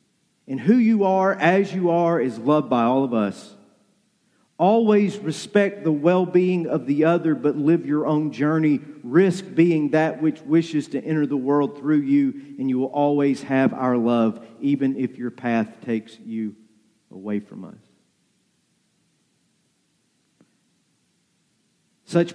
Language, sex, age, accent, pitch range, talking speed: English, male, 40-59, American, 145-185 Hz, 140 wpm